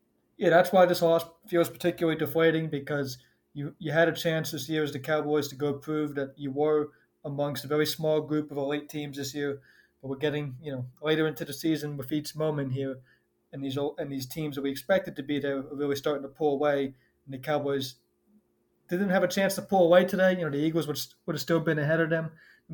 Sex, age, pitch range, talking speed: male, 20-39, 135-155 Hz, 240 wpm